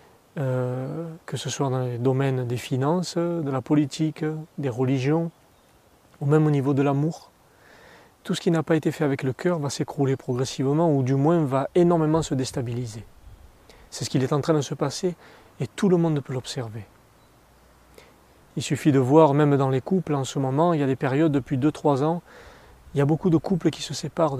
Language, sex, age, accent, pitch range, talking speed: French, male, 30-49, French, 125-155 Hz, 205 wpm